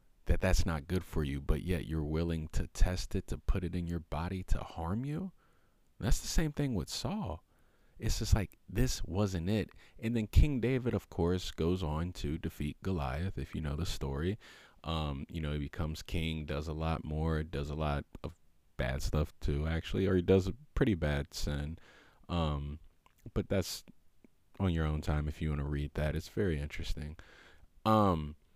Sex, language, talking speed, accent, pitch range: male, English, 195 wpm, American, 75-90 Hz